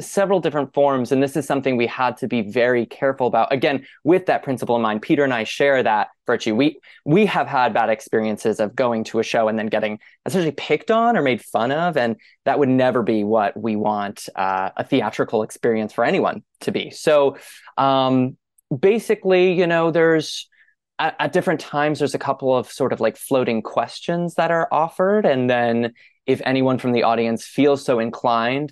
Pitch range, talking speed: 115-150 Hz, 200 wpm